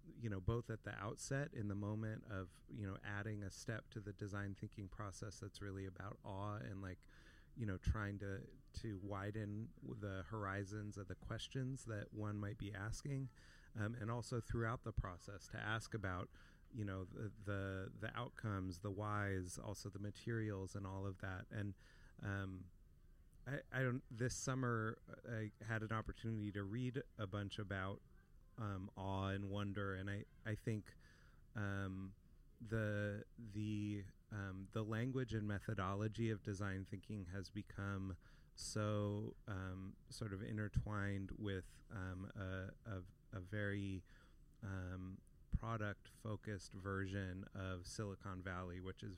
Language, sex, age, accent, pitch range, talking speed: English, male, 30-49, American, 95-110 Hz, 150 wpm